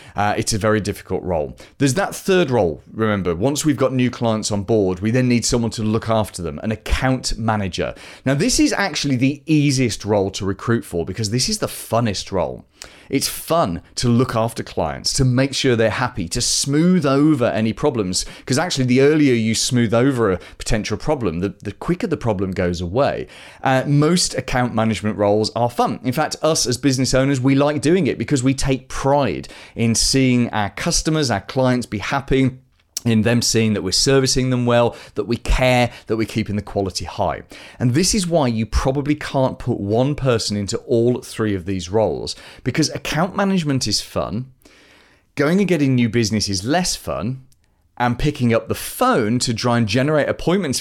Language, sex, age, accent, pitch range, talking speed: English, male, 30-49, British, 105-135 Hz, 195 wpm